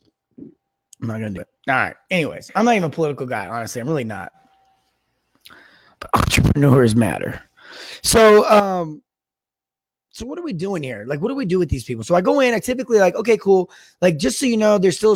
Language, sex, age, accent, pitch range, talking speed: English, male, 20-39, American, 130-180 Hz, 215 wpm